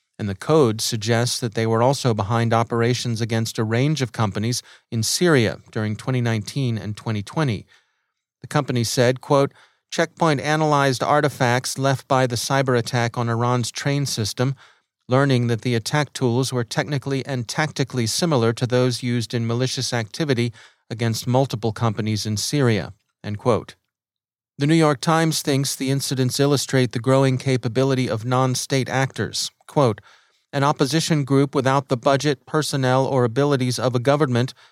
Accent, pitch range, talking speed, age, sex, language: American, 115-140 Hz, 150 wpm, 40-59, male, English